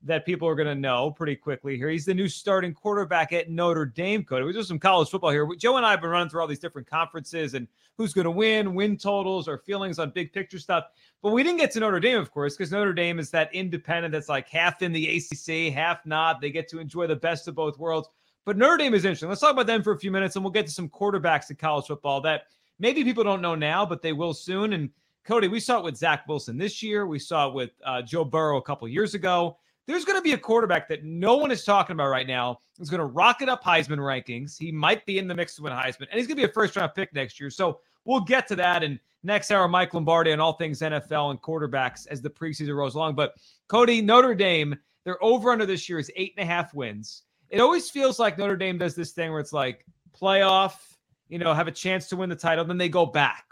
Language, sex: English, male